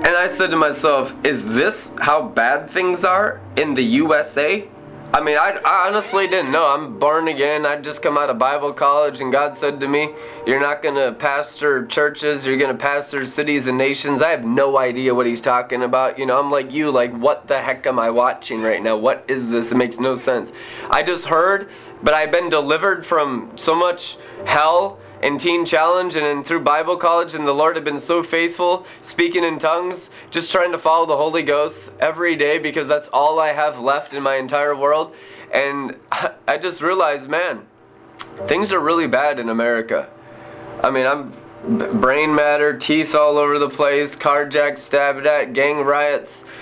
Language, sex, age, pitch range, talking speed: English, male, 20-39, 125-155 Hz, 195 wpm